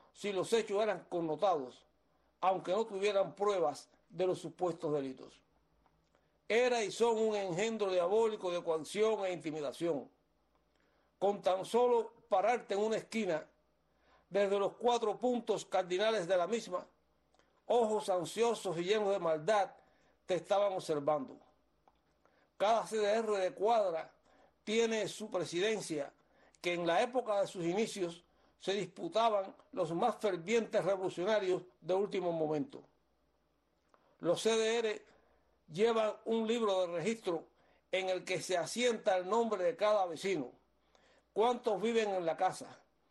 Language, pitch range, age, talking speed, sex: Spanish, 180-220 Hz, 60-79, 130 wpm, male